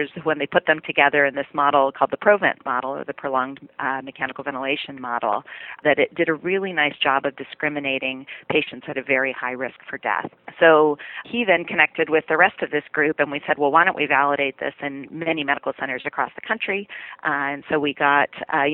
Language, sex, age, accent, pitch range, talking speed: English, female, 40-59, American, 140-155 Hz, 220 wpm